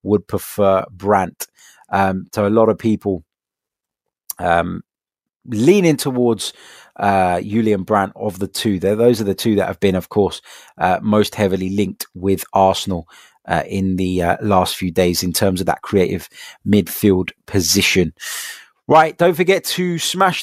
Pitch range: 105-145 Hz